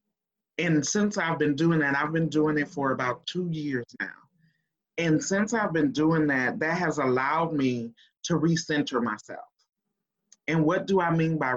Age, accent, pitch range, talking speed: 30-49, American, 140-170 Hz, 175 wpm